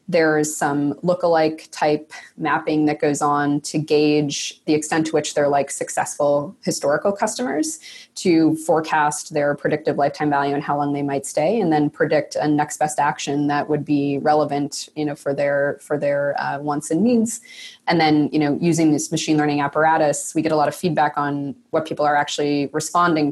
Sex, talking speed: female, 190 wpm